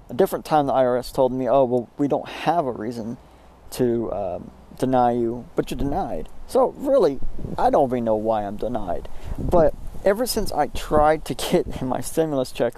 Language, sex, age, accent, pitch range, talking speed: English, male, 40-59, American, 120-160 Hz, 190 wpm